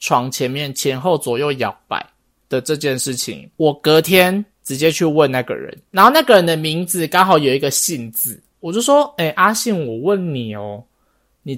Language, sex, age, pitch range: Chinese, male, 20-39, 130-200 Hz